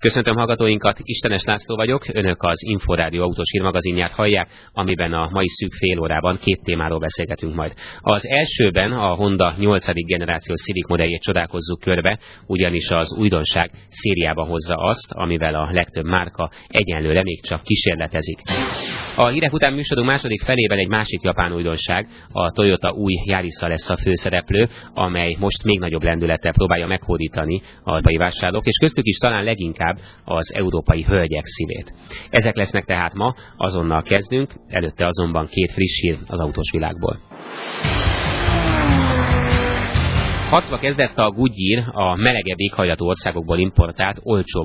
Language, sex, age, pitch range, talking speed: Hungarian, male, 30-49, 85-105 Hz, 140 wpm